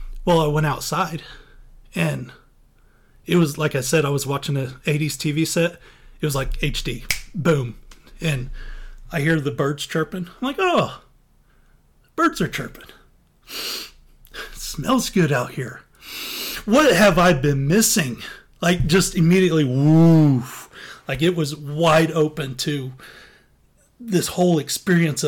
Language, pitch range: English, 145-175 Hz